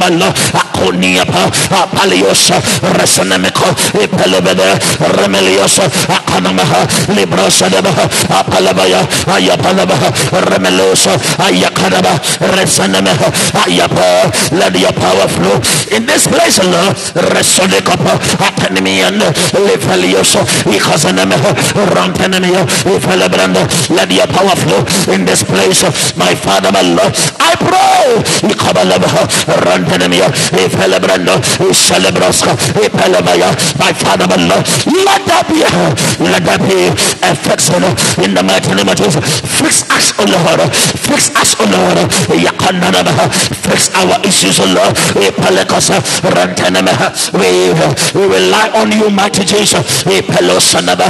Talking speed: 100 wpm